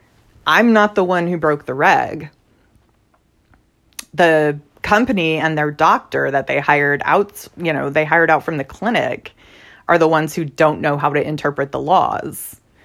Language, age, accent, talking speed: English, 30-49, American, 170 wpm